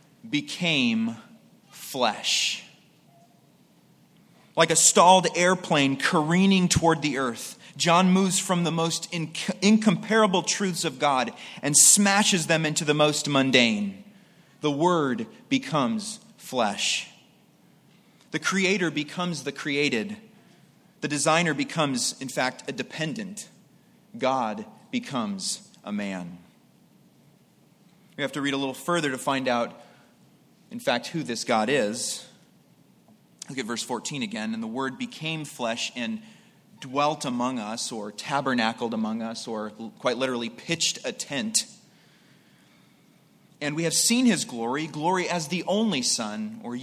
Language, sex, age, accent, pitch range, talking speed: English, male, 30-49, American, 140-205 Hz, 125 wpm